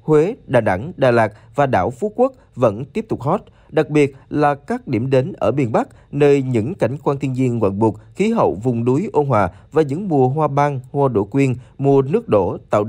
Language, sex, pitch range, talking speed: Vietnamese, male, 115-150 Hz, 225 wpm